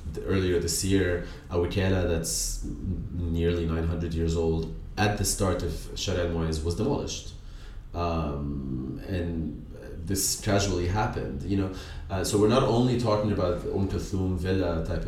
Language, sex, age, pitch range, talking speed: English, male, 20-39, 85-100 Hz, 140 wpm